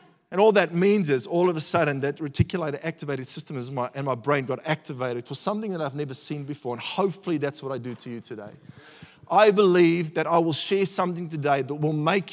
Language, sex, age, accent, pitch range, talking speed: English, male, 30-49, Australian, 150-180 Hz, 225 wpm